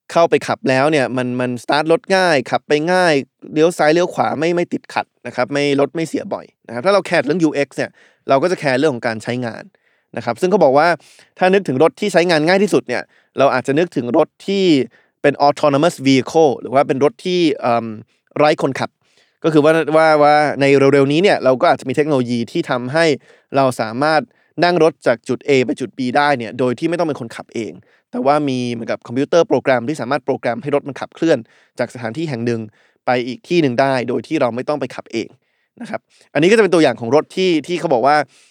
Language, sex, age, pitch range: Thai, male, 20-39, 130-160 Hz